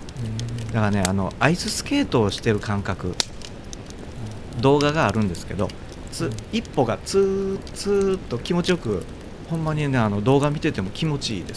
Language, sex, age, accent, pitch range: Japanese, male, 40-59, native, 100-160 Hz